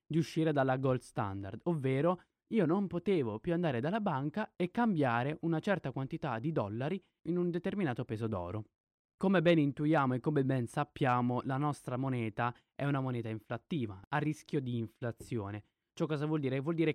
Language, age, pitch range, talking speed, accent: Italian, 20-39, 115-165 Hz, 175 wpm, native